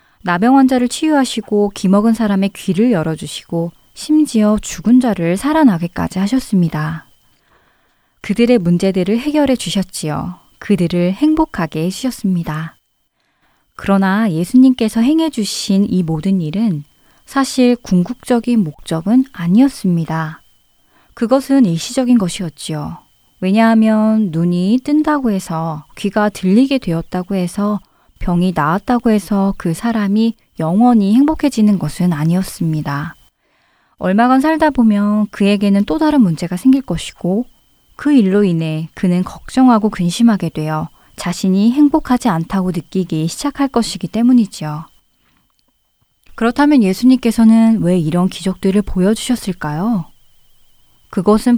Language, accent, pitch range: Korean, native, 175-240 Hz